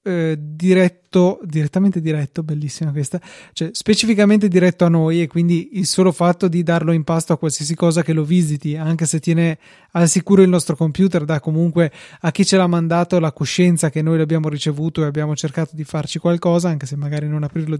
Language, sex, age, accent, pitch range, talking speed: Italian, male, 20-39, native, 155-185 Hz, 195 wpm